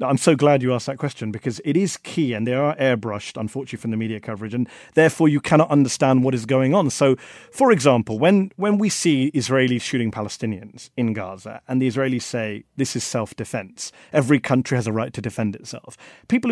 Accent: British